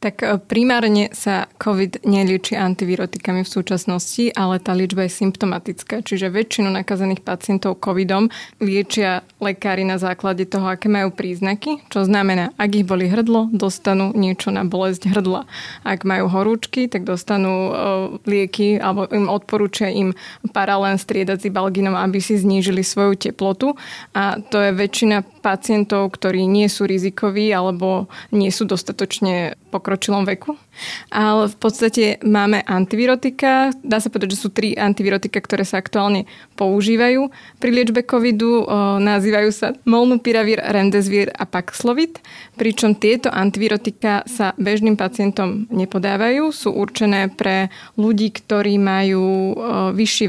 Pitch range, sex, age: 195-220 Hz, female, 20-39